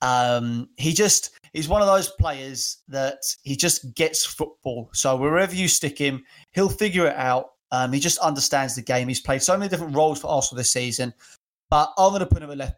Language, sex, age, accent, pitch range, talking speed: English, male, 20-39, British, 135-175 Hz, 210 wpm